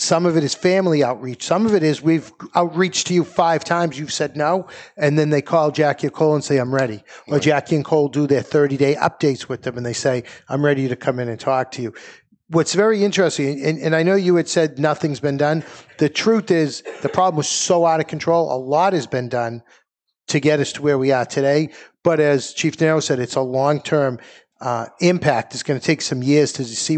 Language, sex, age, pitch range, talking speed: English, male, 50-69, 135-165 Hz, 235 wpm